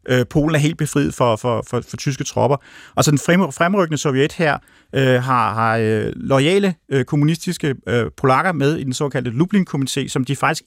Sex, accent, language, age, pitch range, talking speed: male, native, Danish, 30-49, 115-150 Hz, 155 wpm